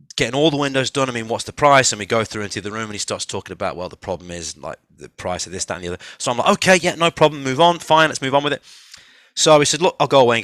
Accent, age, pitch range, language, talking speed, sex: British, 30-49, 100-140 Hz, English, 335 wpm, male